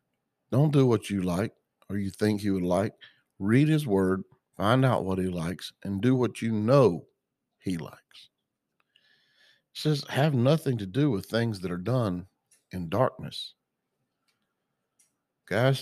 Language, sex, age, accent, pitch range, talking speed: English, male, 50-69, American, 95-115 Hz, 150 wpm